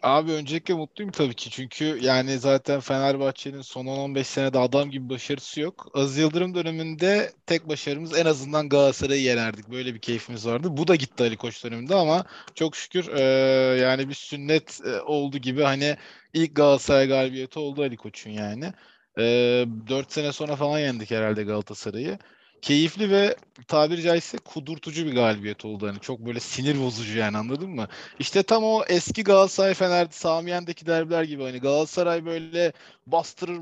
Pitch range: 130-175 Hz